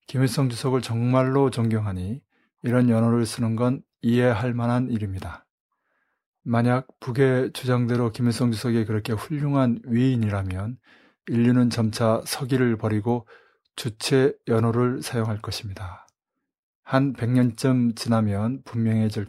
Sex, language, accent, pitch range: male, Korean, native, 115-130 Hz